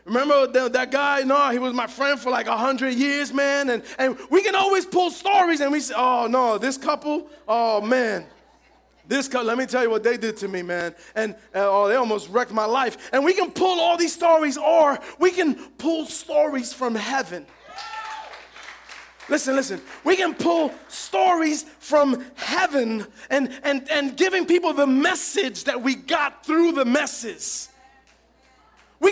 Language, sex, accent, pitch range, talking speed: English, male, American, 260-330 Hz, 175 wpm